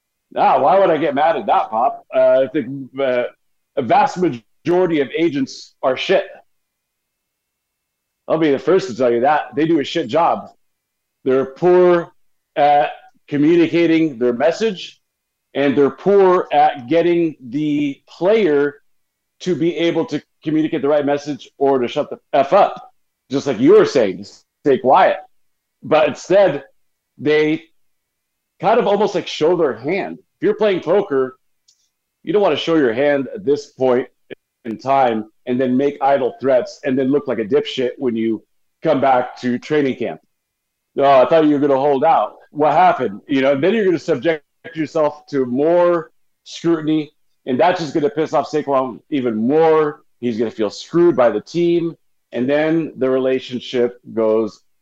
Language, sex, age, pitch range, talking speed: English, male, 40-59, 130-170 Hz, 170 wpm